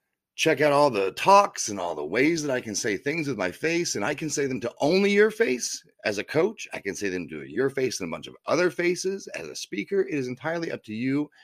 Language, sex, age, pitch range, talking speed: English, male, 30-49, 115-155 Hz, 270 wpm